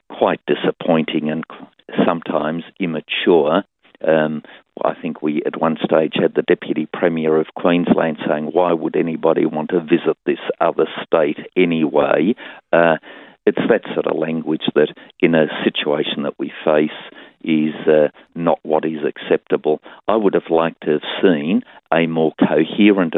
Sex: male